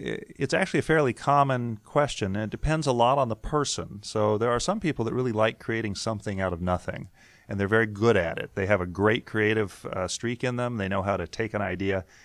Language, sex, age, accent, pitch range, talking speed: English, male, 40-59, American, 95-120 Hz, 240 wpm